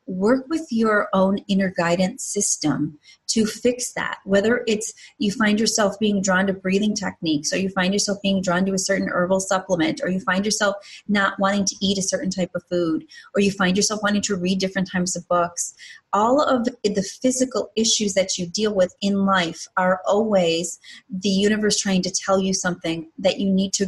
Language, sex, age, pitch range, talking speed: English, female, 30-49, 185-230 Hz, 200 wpm